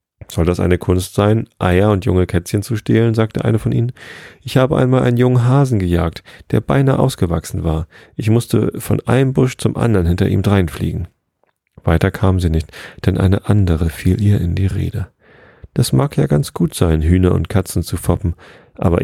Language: German